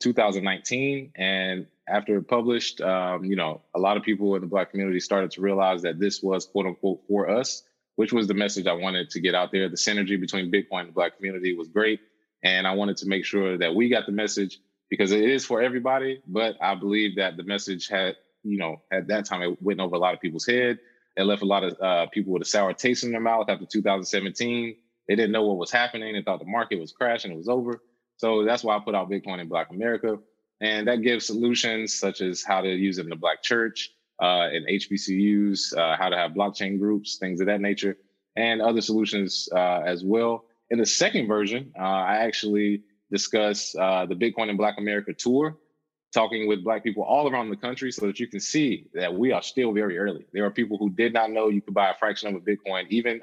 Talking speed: 230 wpm